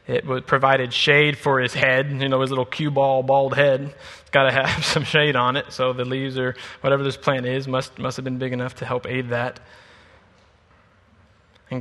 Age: 20-39